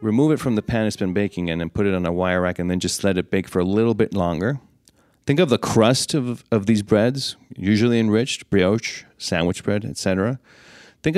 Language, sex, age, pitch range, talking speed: English, male, 30-49, 90-115 Hz, 230 wpm